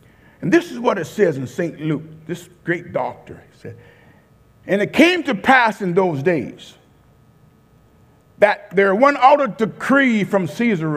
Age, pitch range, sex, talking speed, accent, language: 50-69, 135-205 Hz, male, 160 wpm, American, English